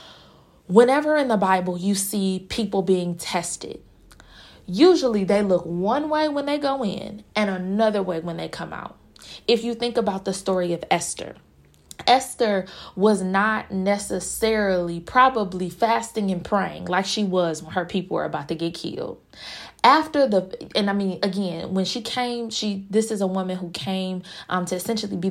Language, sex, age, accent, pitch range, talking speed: English, female, 20-39, American, 180-235 Hz, 170 wpm